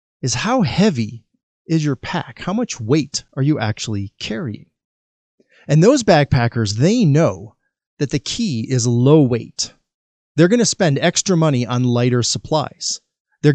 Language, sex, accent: English, male, American